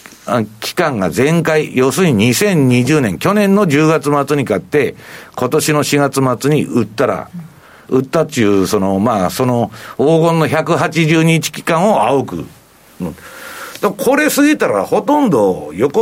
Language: Japanese